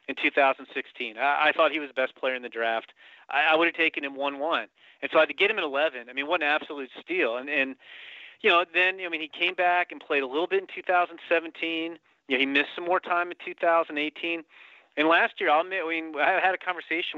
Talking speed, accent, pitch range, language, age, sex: 260 wpm, American, 145-180 Hz, English, 30-49, male